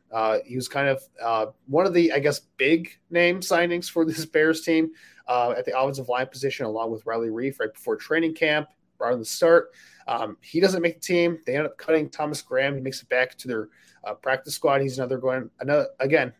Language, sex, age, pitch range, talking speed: English, male, 20-39, 115-160 Hz, 225 wpm